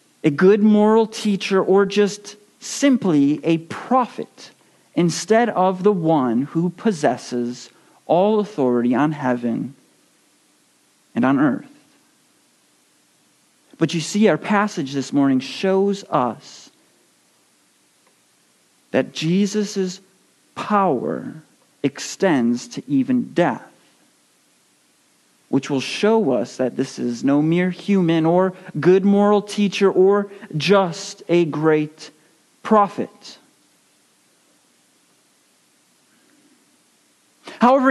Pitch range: 170-245 Hz